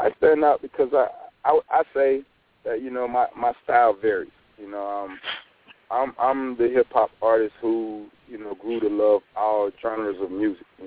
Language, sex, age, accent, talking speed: English, male, 20-39, American, 195 wpm